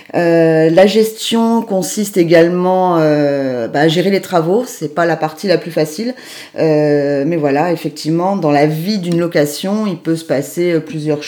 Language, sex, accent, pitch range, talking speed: French, female, French, 150-185 Hz, 170 wpm